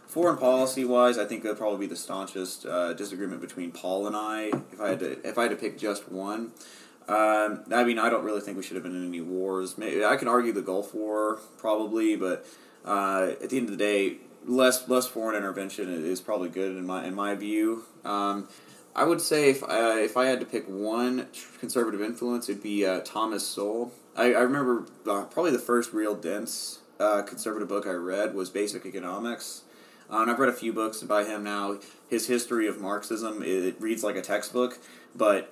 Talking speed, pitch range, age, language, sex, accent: 210 wpm, 95-120 Hz, 20-39, English, male, American